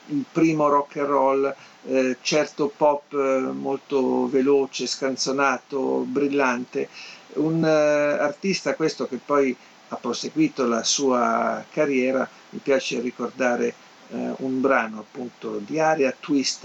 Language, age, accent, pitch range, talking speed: Italian, 50-69, native, 130-155 Hz, 120 wpm